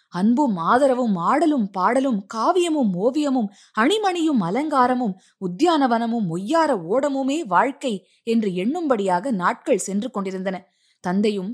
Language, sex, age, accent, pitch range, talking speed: Tamil, female, 20-39, native, 195-270 Hz, 95 wpm